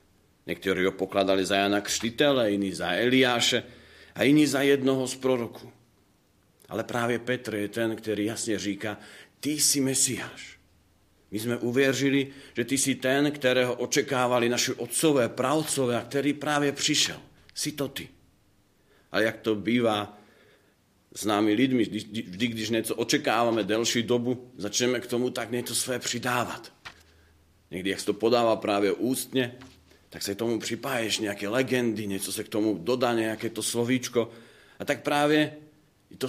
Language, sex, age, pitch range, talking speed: Slovak, male, 40-59, 105-130 Hz, 145 wpm